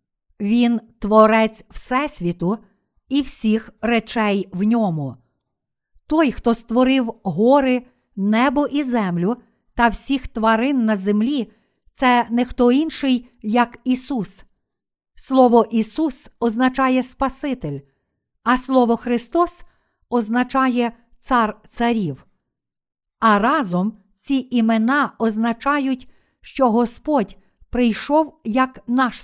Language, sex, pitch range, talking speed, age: Ukrainian, female, 215-260 Hz, 95 wpm, 50-69